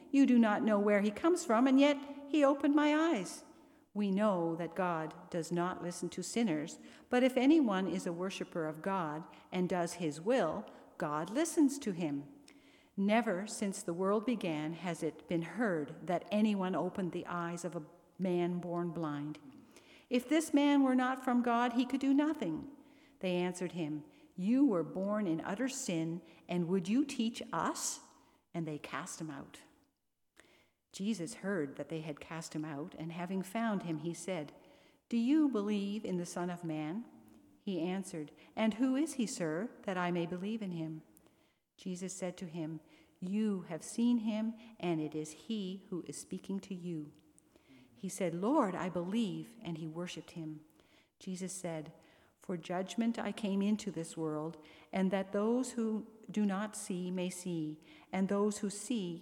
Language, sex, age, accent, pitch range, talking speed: English, female, 50-69, American, 170-235 Hz, 175 wpm